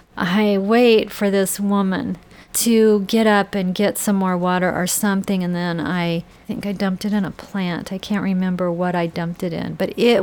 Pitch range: 175-200 Hz